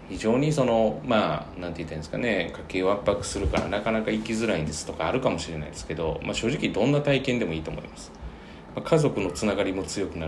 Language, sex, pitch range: Japanese, male, 80-115 Hz